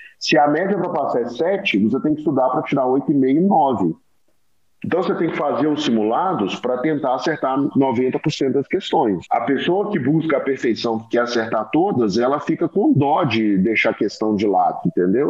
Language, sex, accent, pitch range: Portuguese, male, Brazilian, 115-160 Hz